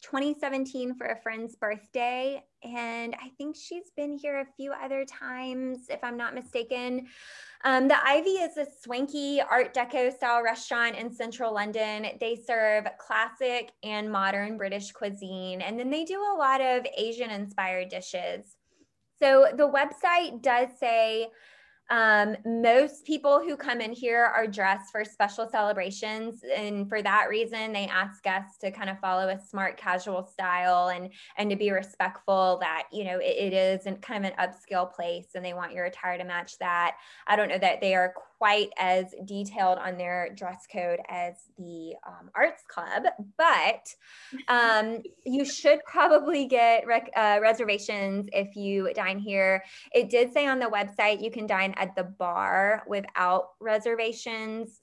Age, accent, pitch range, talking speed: 20-39, American, 190-250 Hz, 165 wpm